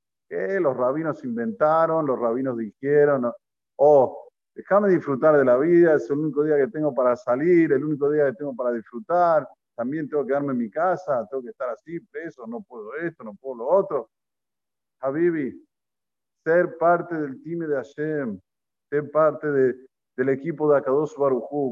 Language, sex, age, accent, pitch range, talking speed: Spanish, male, 50-69, Argentinian, 130-200 Hz, 170 wpm